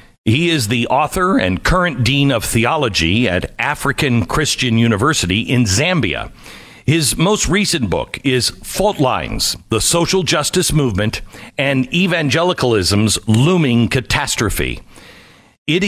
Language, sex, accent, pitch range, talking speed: English, male, American, 110-155 Hz, 115 wpm